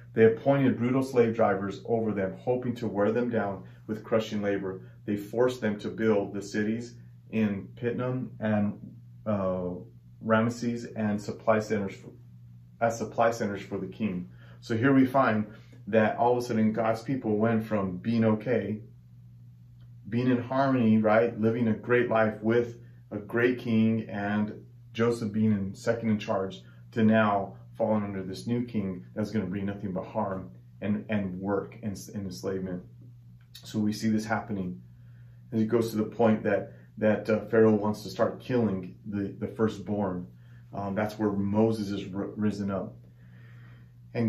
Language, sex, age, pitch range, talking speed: English, male, 30-49, 100-120 Hz, 165 wpm